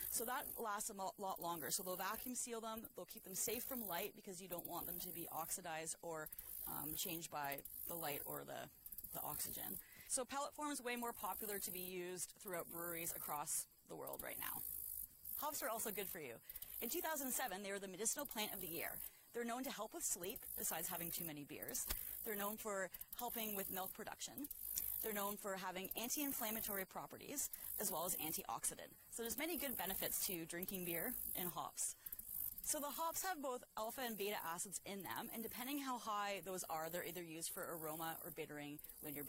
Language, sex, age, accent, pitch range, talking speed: English, female, 30-49, American, 170-235 Hz, 200 wpm